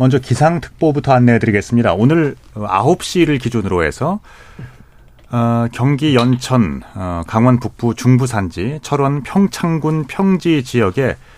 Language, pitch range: Korean, 85-125 Hz